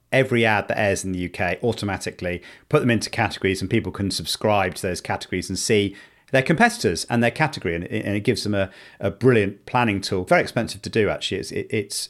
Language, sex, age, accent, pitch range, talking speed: English, male, 40-59, British, 100-135 Hz, 215 wpm